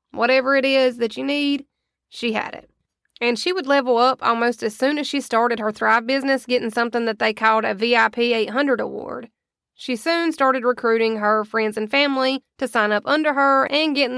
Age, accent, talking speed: 20-39, American, 200 wpm